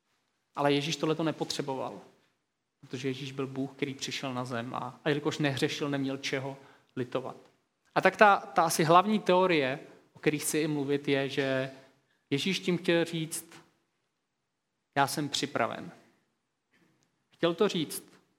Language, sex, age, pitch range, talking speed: Czech, male, 30-49, 130-165 Hz, 140 wpm